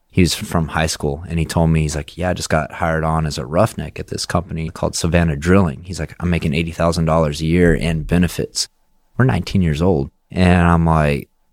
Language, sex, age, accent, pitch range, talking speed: English, male, 30-49, American, 75-90 Hz, 230 wpm